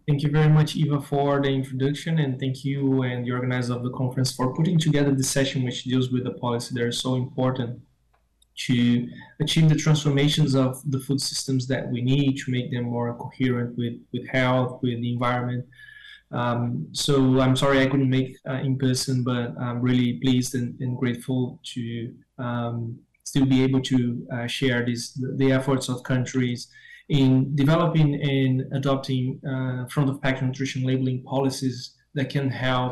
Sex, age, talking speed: male, 20-39, 180 wpm